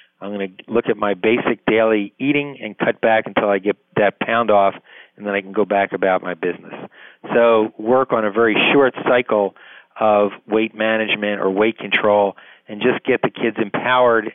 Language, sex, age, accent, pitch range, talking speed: English, male, 40-59, American, 105-120 Hz, 190 wpm